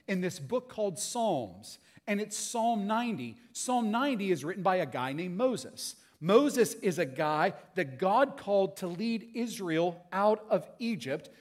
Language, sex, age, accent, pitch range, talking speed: Russian, male, 40-59, American, 160-220 Hz, 165 wpm